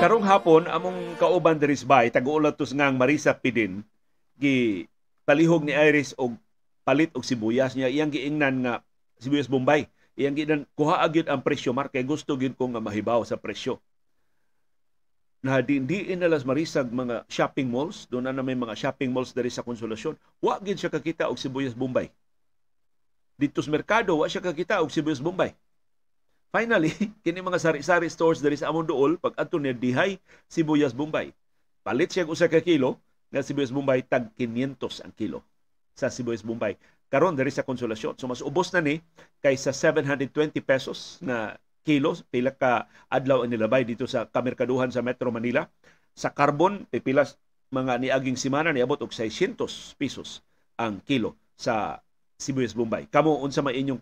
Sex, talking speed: male, 150 wpm